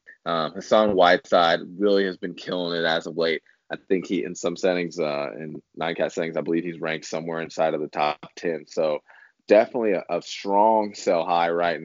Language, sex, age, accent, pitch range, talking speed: English, male, 20-39, American, 80-95 Hz, 195 wpm